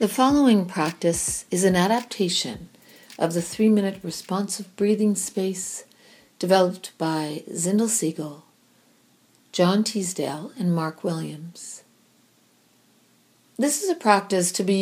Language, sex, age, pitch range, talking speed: English, female, 50-69, 165-210 Hz, 110 wpm